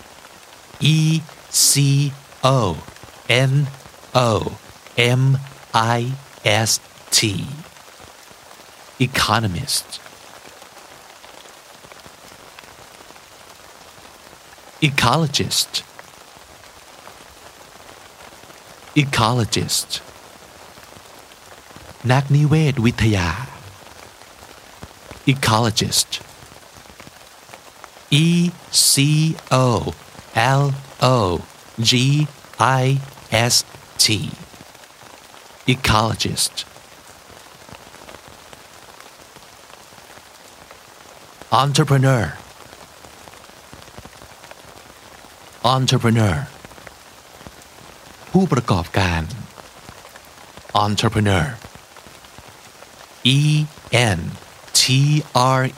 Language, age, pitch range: Thai, 50-69, 110-140 Hz